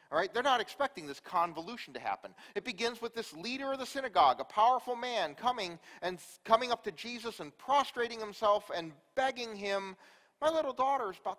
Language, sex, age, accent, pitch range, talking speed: English, male, 40-59, American, 185-245 Hz, 195 wpm